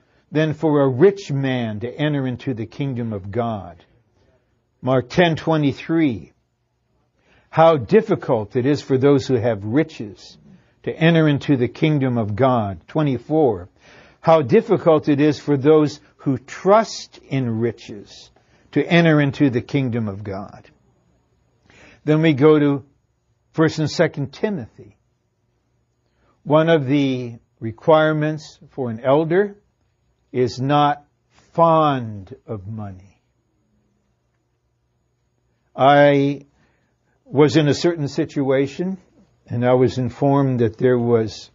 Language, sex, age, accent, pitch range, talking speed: English, male, 60-79, American, 120-155 Hz, 120 wpm